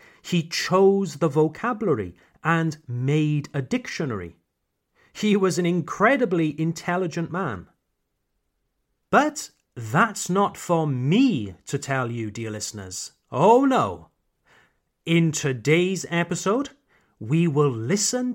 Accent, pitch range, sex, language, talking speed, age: British, 135-205 Hz, male, French, 105 wpm, 40-59